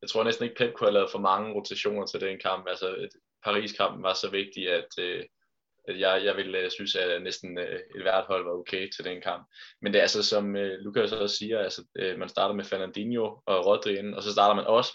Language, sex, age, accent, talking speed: Danish, male, 20-39, native, 235 wpm